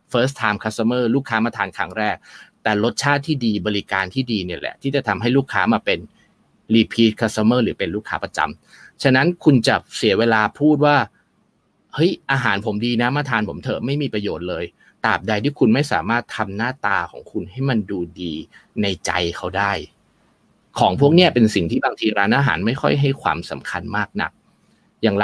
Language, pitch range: Thai, 105-140 Hz